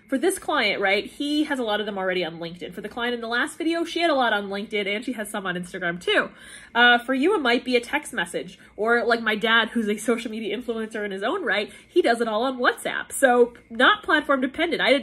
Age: 20-39